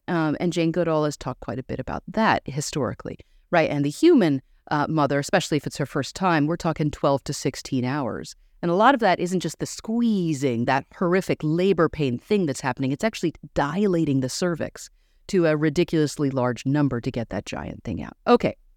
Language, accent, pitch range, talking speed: English, American, 135-195 Hz, 200 wpm